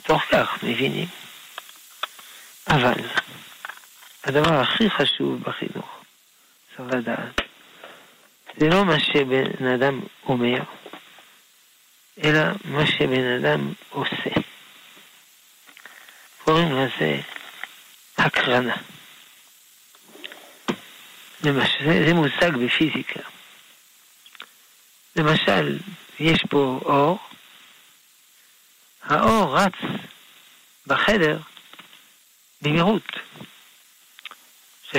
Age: 60-79